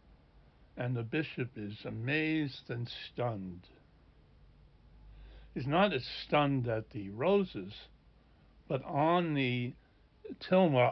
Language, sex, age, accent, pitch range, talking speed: English, male, 60-79, American, 110-135 Hz, 100 wpm